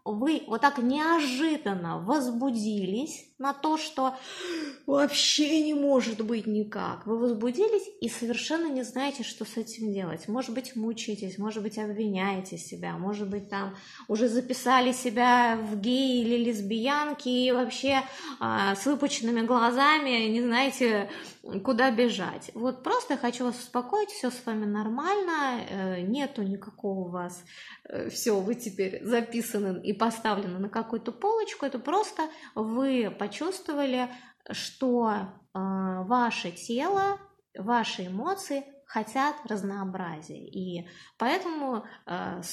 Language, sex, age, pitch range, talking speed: Russian, female, 20-39, 205-270 Hz, 125 wpm